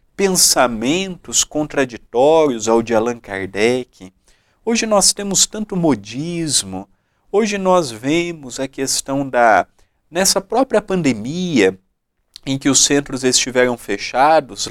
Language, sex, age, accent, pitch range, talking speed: Portuguese, male, 50-69, Brazilian, 110-160 Hz, 105 wpm